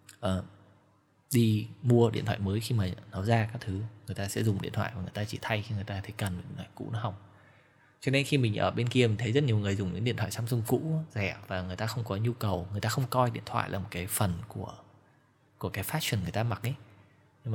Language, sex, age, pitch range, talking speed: Vietnamese, male, 20-39, 100-120 Hz, 265 wpm